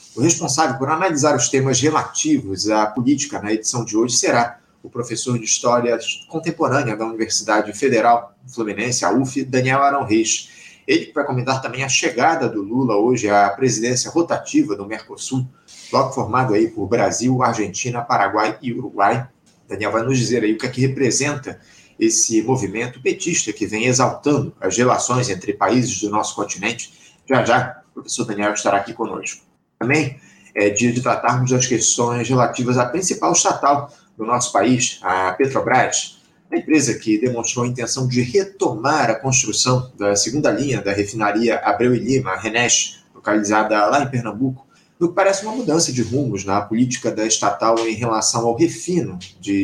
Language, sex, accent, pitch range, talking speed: Portuguese, male, Brazilian, 110-135 Hz, 165 wpm